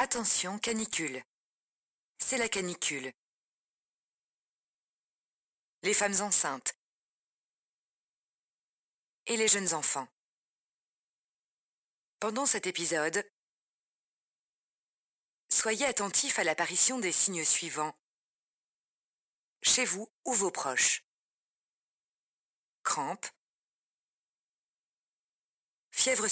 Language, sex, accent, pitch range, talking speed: French, female, French, 170-230 Hz, 65 wpm